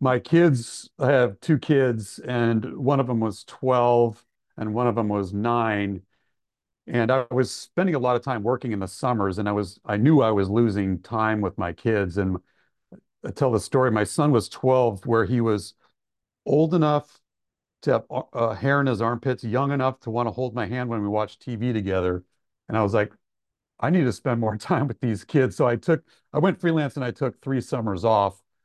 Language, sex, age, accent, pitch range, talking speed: English, male, 40-59, American, 105-130 Hz, 210 wpm